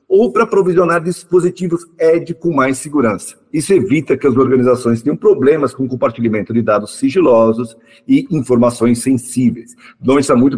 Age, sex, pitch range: 50-69, male, 125-175 Hz